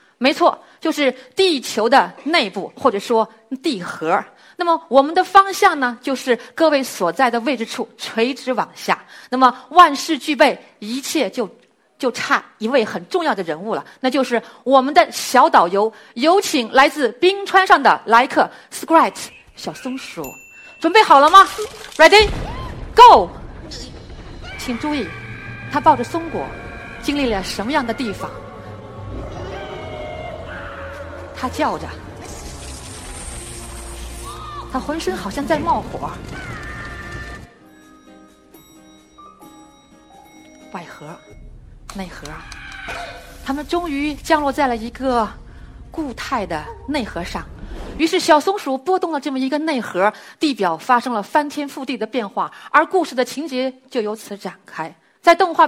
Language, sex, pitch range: Chinese, female, 230-320 Hz